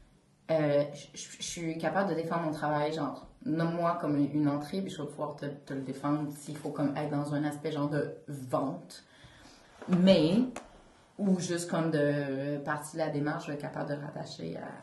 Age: 30-49